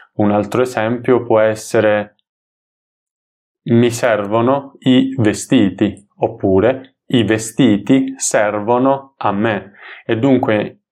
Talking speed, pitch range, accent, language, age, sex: 95 wpm, 105-120 Hz, native, Italian, 20-39, male